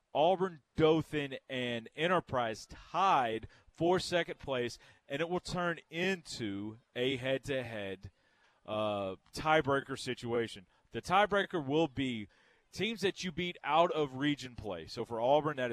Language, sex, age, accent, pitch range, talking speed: English, male, 30-49, American, 125-170 Hz, 125 wpm